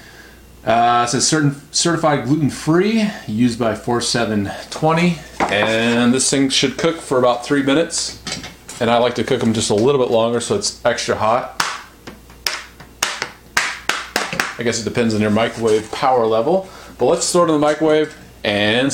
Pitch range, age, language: 105-135 Hz, 30-49, English